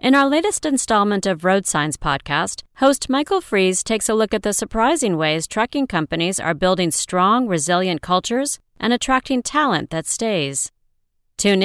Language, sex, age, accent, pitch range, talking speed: English, female, 40-59, American, 165-225 Hz, 160 wpm